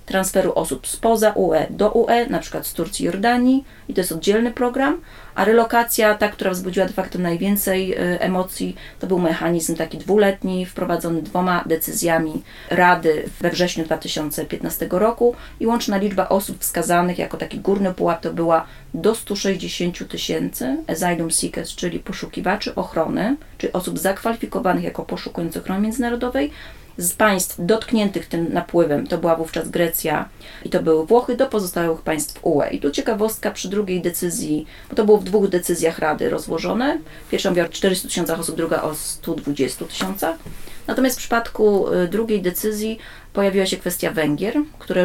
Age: 30-49